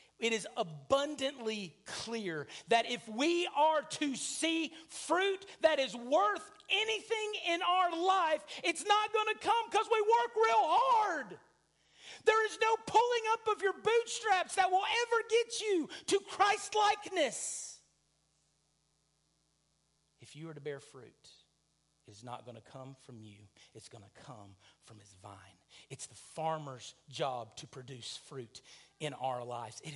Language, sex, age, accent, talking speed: English, male, 40-59, American, 150 wpm